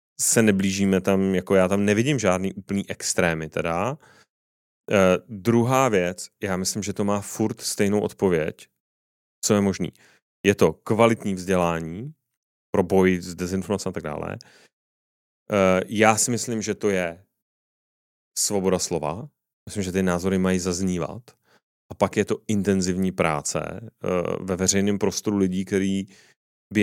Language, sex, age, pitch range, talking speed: Czech, male, 30-49, 95-110 Hz, 140 wpm